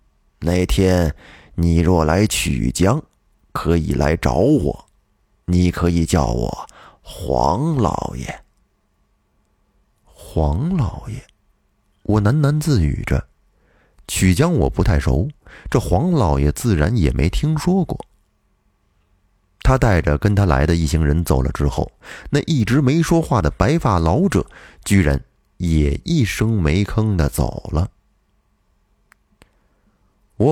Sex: male